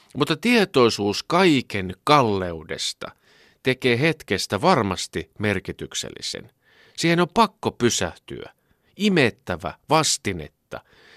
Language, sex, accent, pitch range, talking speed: Finnish, male, native, 95-130 Hz, 75 wpm